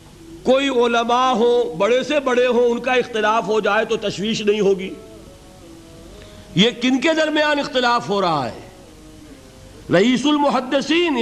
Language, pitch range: Urdu, 200-285 Hz